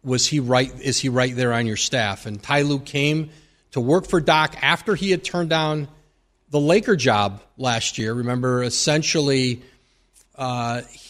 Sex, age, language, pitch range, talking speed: male, 40-59, English, 120-150 Hz, 170 wpm